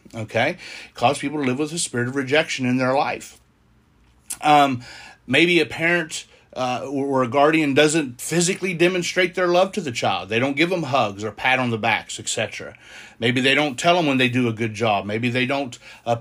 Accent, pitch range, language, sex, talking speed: American, 115-145 Hz, English, male, 205 wpm